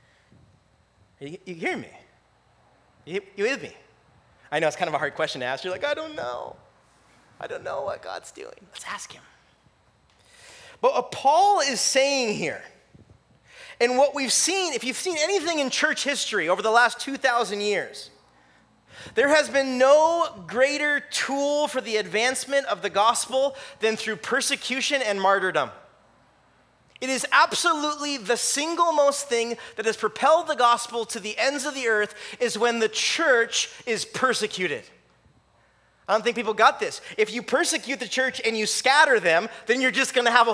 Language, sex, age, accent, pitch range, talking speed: English, male, 30-49, American, 205-280 Hz, 170 wpm